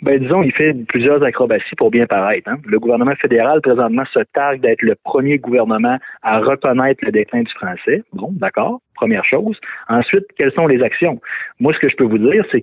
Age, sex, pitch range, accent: 30-49, male, 120-175 Hz, Canadian